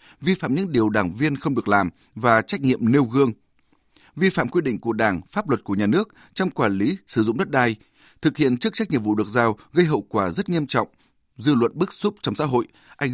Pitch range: 110-155 Hz